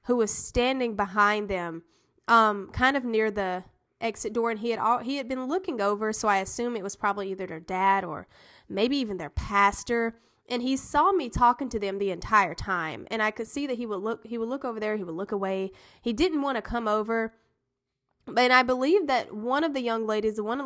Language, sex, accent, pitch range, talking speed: English, female, American, 200-245 Hz, 230 wpm